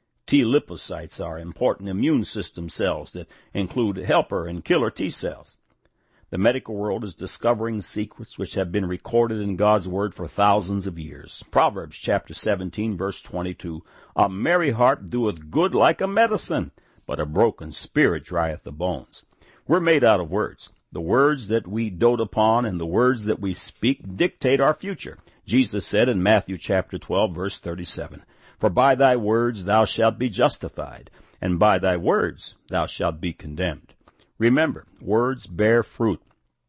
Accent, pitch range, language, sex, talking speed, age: American, 90-120 Hz, English, male, 160 wpm, 60-79